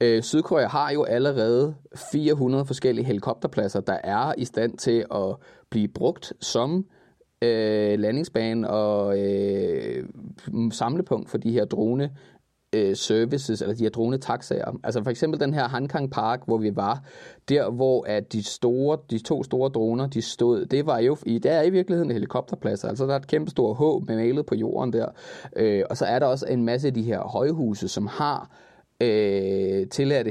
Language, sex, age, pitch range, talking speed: Danish, male, 30-49, 110-140 Hz, 170 wpm